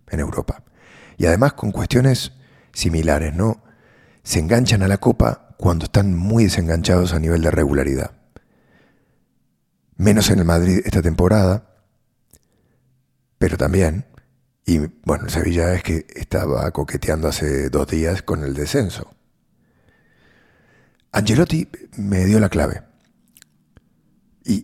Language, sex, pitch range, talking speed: English, male, 80-105 Hz, 115 wpm